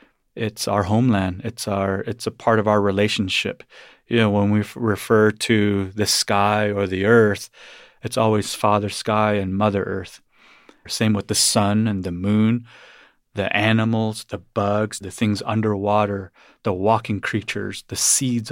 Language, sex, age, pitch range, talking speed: English, male, 30-49, 100-115 Hz, 160 wpm